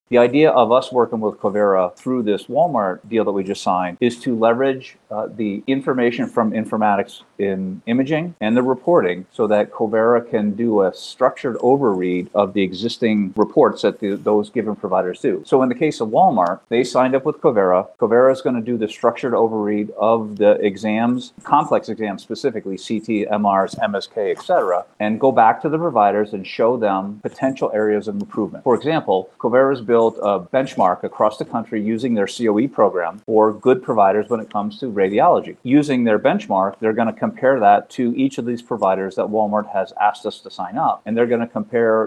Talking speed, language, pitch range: 190 wpm, English, 105-125 Hz